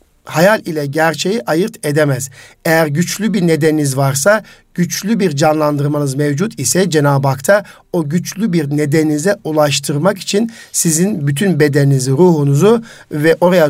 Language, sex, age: Turkish, male, 50-69